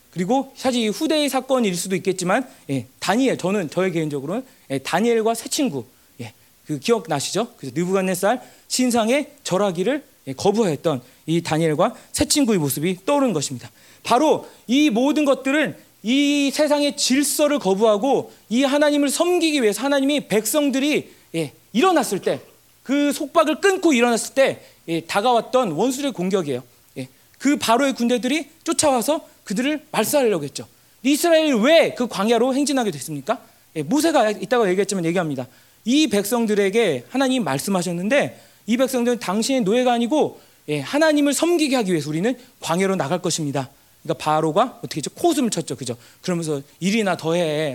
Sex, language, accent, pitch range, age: male, Korean, native, 170-275 Hz, 40-59